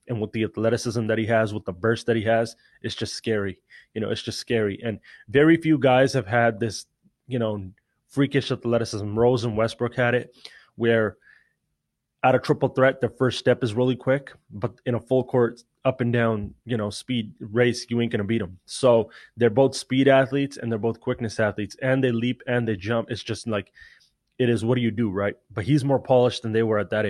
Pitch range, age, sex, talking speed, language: 110-125 Hz, 20-39, male, 225 wpm, English